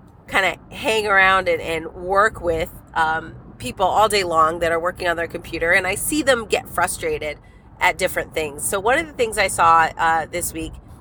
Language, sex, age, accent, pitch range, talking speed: English, female, 30-49, American, 175-230 Hz, 205 wpm